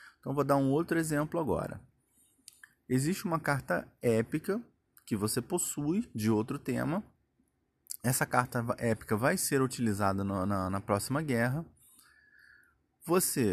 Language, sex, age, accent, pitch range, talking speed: Portuguese, male, 20-39, Brazilian, 110-145 Hz, 130 wpm